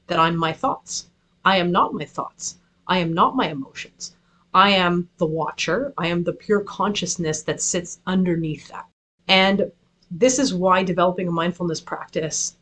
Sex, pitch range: female, 170-190 Hz